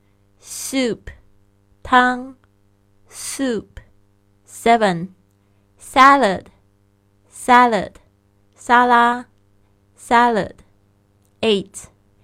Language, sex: Chinese, female